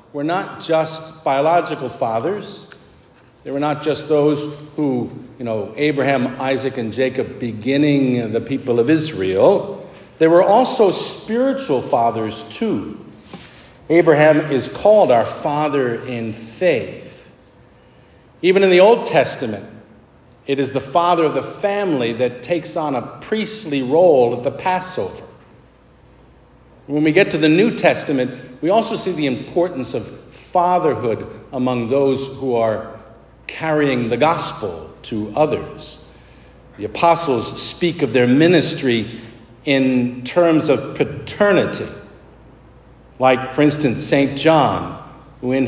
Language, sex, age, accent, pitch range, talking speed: English, male, 50-69, American, 125-160 Hz, 125 wpm